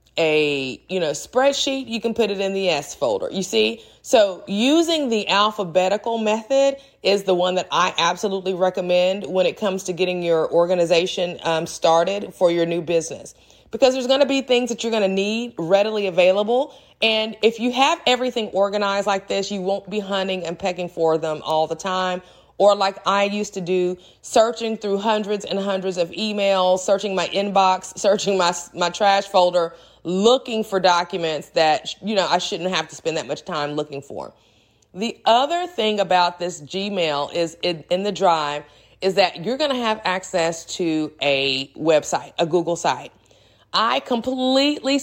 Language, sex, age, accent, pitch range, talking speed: English, female, 30-49, American, 170-215 Hz, 180 wpm